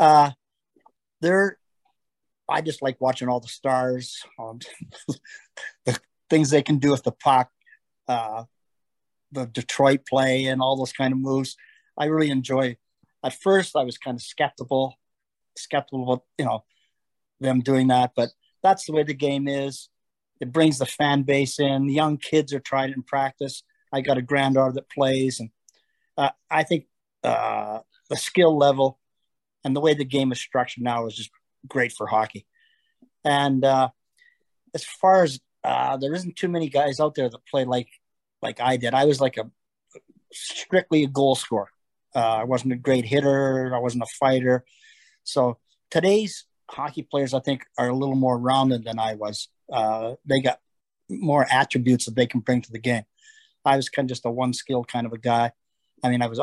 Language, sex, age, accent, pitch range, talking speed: English, male, 40-59, American, 125-145 Hz, 180 wpm